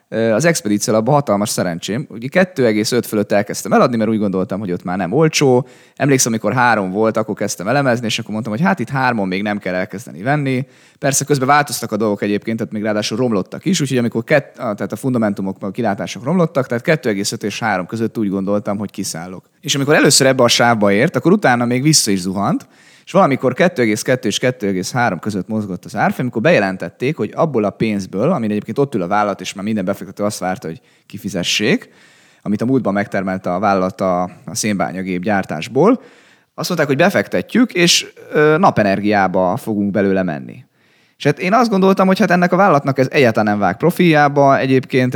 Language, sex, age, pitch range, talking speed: Hungarian, male, 30-49, 100-135 Hz, 190 wpm